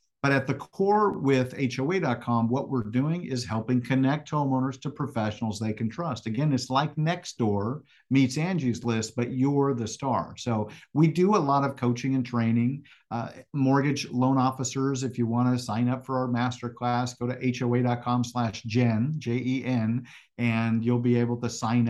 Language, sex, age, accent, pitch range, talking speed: English, male, 50-69, American, 115-140 Hz, 175 wpm